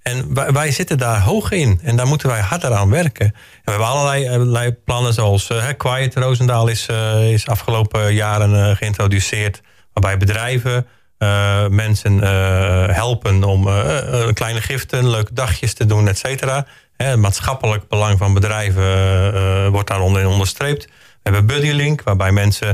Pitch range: 105-130 Hz